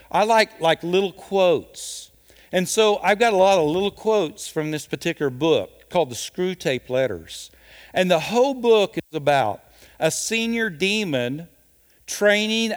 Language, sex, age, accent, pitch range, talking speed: English, male, 50-69, American, 140-205 Hz, 150 wpm